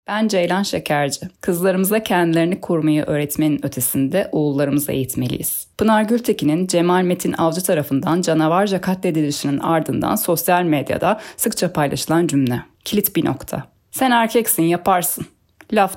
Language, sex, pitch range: Turkish, female, 155-210 Hz